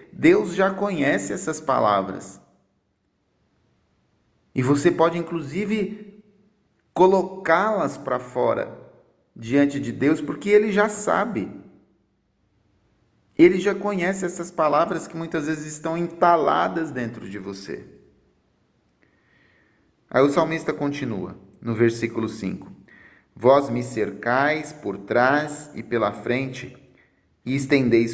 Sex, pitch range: male, 120-170 Hz